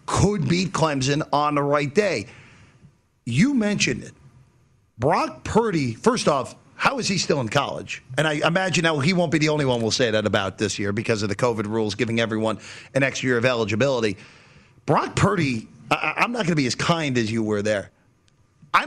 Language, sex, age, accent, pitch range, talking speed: English, male, 40-59, American, 130-180 Hz, 195 wpm